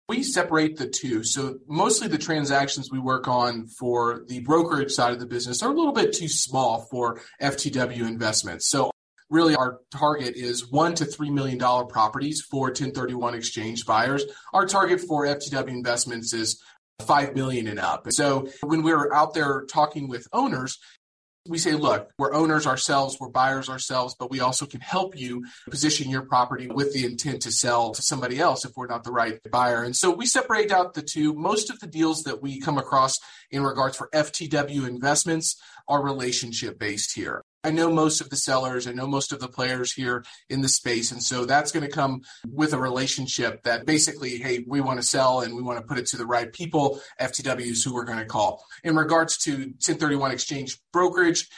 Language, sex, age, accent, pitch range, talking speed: English, male, 30-49, American, 125-150 Hz, 200 wpm